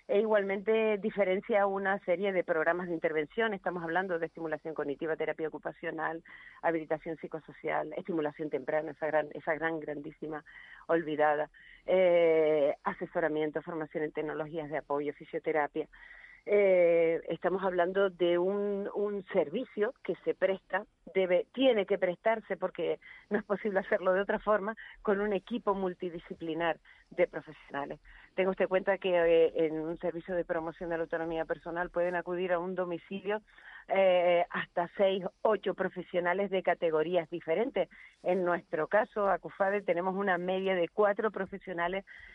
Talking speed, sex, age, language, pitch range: 140 wpm, female, 40-59, Spanish, 160-195 Hz